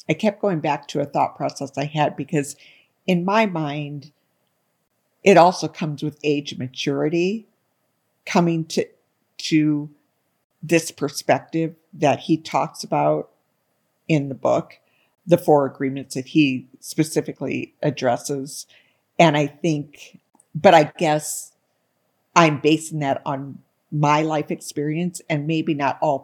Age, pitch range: 50-69, 140-165 Hz